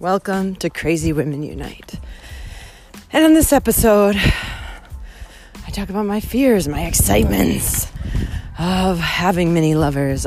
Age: 30-49